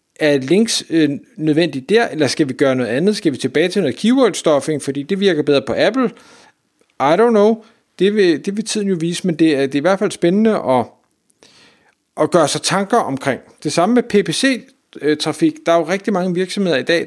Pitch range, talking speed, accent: 135-200 Hz, 215 wpm, native